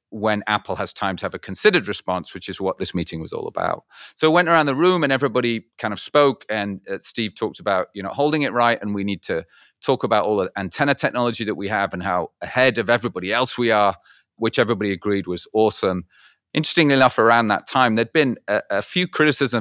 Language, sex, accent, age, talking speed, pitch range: English, male, British, 30-49, 230 wpm, 105-145 Hz